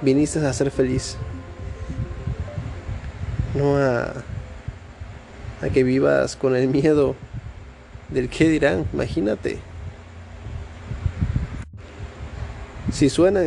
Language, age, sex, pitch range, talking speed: Spanish, 20-39, male, 100-145 Hz, 80 wpm